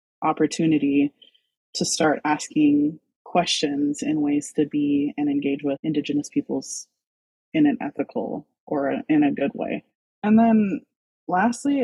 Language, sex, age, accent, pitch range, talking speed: English, female, 20-39, American, 155-215 Hz, 125 wpm